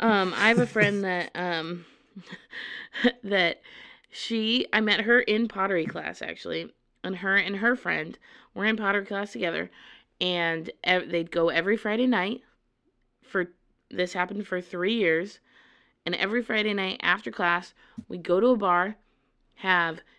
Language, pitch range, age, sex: English, 170-215 Hz, 20-39, female